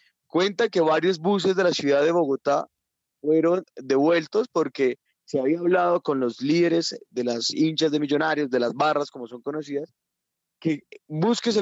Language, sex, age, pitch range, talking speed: Spanish, male, 20-39, 140-175 Hz, 165 wpm